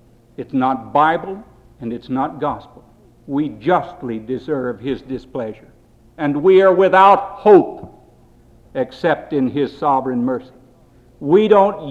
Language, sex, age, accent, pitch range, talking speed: English, male, 60-79, American, 120-180 Hz, 120 wpm